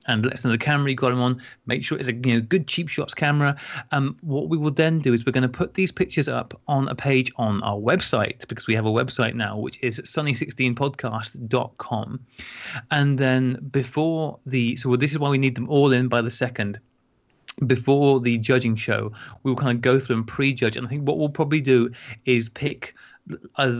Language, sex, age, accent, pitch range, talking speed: English, male, 30-49, British, 115-140 Hz, 220 wpm